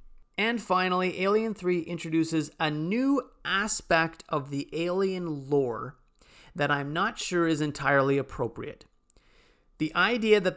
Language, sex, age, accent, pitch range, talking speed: English, male, 30-49, American, 130-170 Hz, 125 wpm